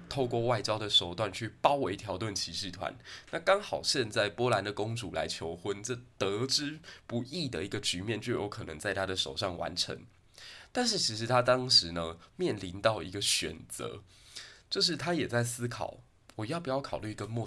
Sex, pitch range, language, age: male, 95-125 Hz, Chinese, 20-39